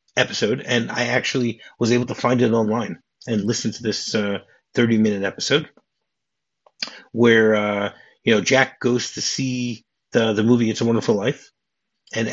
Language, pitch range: English, 105-125 Hz